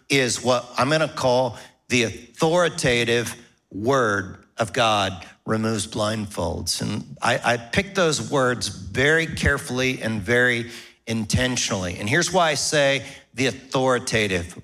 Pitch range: 125-155 Hz